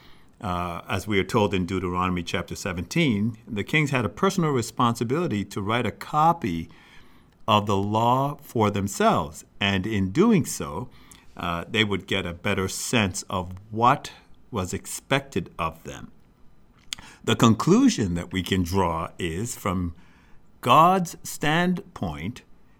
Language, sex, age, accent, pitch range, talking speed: English, male, 50-69, American, 95-125 Hz, 135 wpm